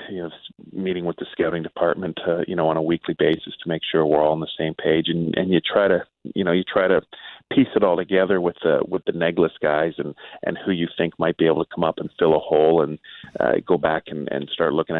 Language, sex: English, male